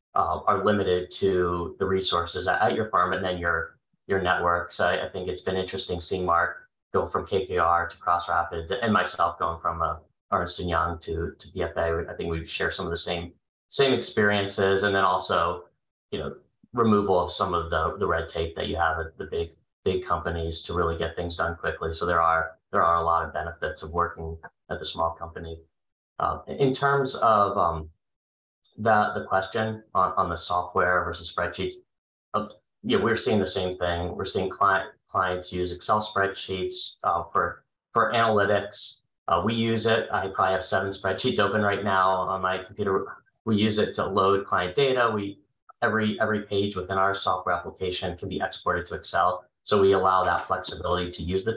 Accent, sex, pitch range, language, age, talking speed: American, male, 85-100 Hz, English, 30-49, 195 wpm